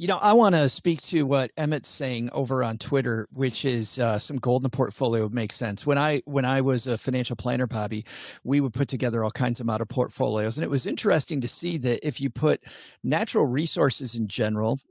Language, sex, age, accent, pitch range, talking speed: English, male, 40-59, American, 125-170 Hz, 215 wpm